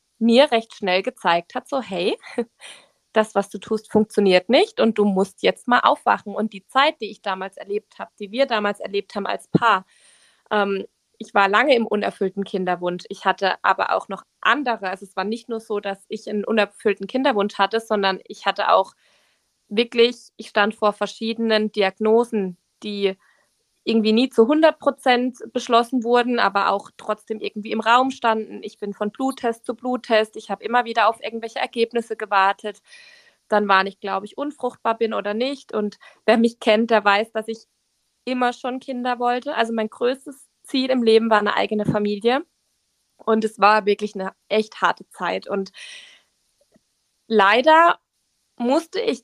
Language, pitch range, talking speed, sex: German, 205-245 Hz, 170 wpm, female